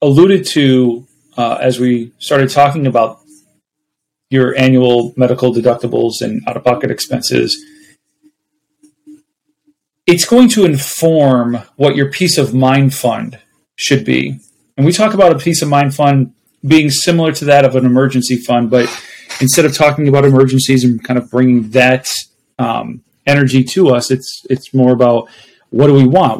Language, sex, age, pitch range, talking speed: English, male, 30-49, 125-155 Hz, 155 wpm